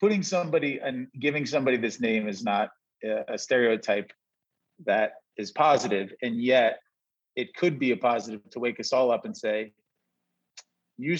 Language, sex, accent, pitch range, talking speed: English, male, American, 115-140 Hz, 155 wpm